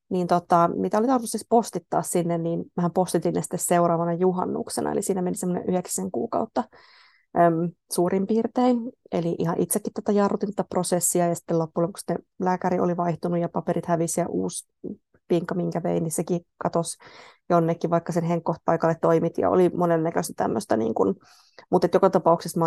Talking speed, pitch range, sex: 160 wpm, 160-185 Hz, female